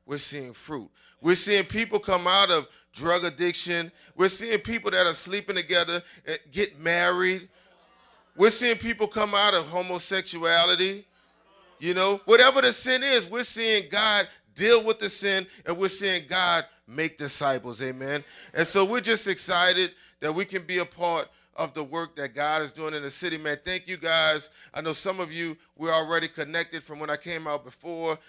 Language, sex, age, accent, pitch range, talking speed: English, male, 30-49, American, 155-195 Hz, 185 wpm